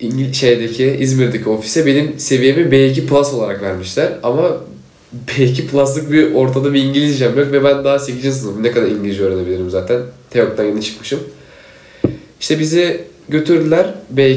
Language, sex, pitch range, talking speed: Turkish, male, 115-150 Hz, 140 wpm